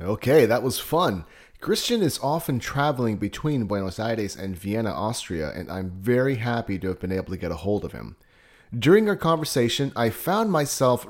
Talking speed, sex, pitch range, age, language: 185 wpm, male, 100-150 Hz, 30-49, English